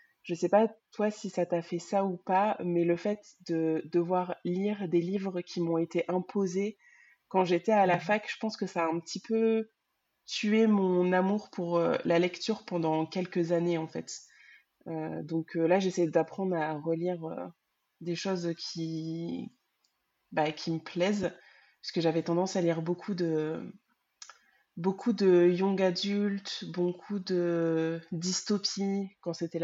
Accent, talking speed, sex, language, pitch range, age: French, 165 wpm, female, French, 165-195 Hz, 20-39